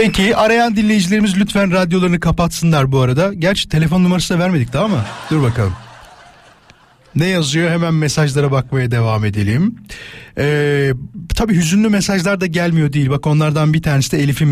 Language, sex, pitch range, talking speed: Turkish, male, 135-200 Hz, 155 wpm